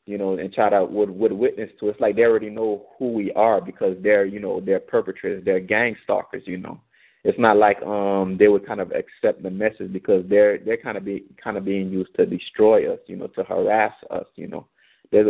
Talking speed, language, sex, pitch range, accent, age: 240 wpm, English, male, 100-125 Hz, American, 20-39